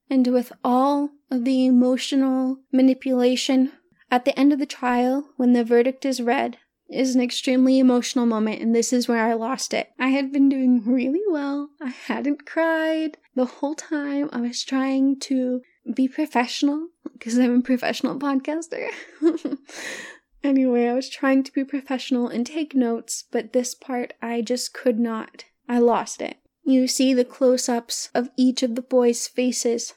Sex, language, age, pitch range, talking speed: female, English, 20-39, 245-275 Hz, 165 wpm